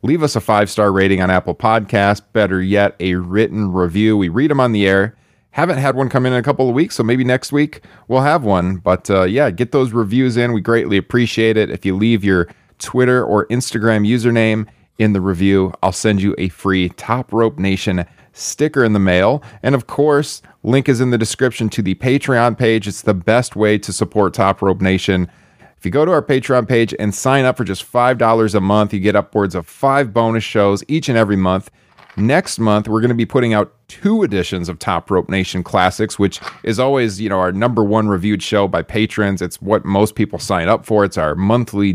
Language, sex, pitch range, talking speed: English, male, 95-120 Hz, 215 wpm